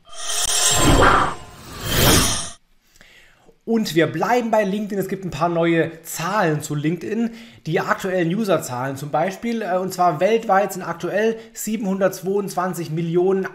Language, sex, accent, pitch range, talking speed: German, male, German, 165-195 Hz, 110 wpm